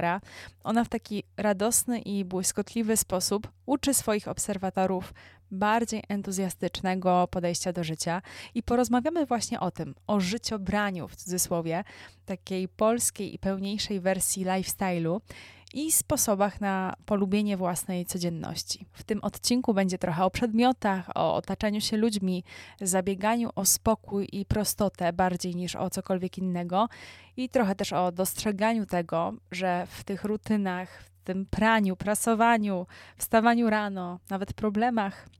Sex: female